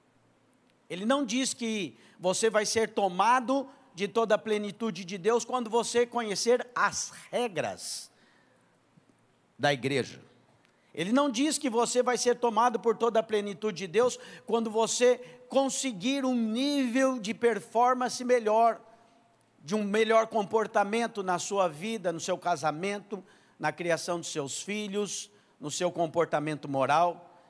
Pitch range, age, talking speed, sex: 190-240 Hz, 50-69, 135 wpm, male